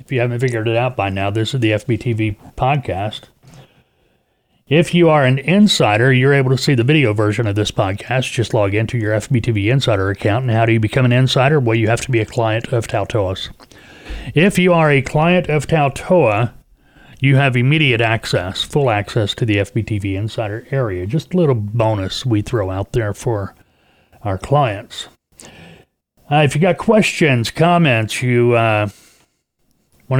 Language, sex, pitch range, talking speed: English, male, 105-130 Hz, 175 wpm